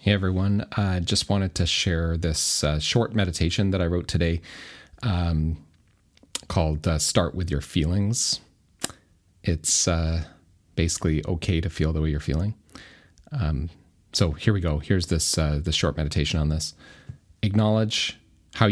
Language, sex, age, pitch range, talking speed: English, male, 30-49, 80-95 Hz, 145 wpm